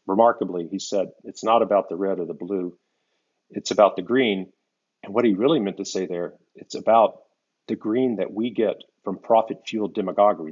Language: English